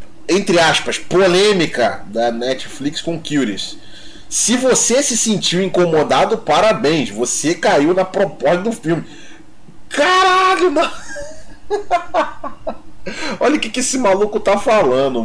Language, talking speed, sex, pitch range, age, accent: Portuguese, 110 wpm, male, 130-210 Hz, 20-39, Brazilian